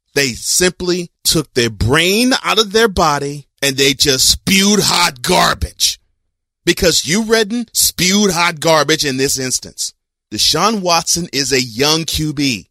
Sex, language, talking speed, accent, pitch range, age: male, English, 140 wpm, American, 135-205 Hz, 30-49